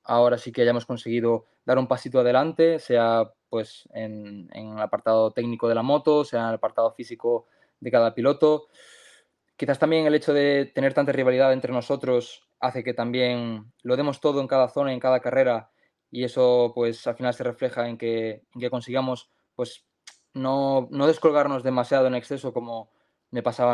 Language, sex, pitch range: Spanish, male, 115-135 Hz